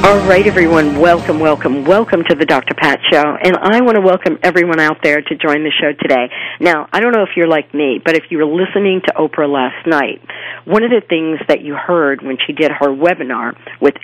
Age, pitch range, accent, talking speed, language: 50-69, 150-195 Hz, American, 230 wpm, English